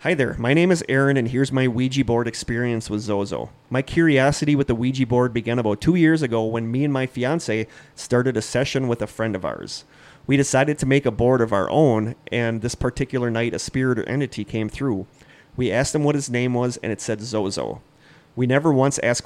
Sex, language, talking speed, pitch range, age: male, English, 225 wpm, 110-135 Hz, 30-49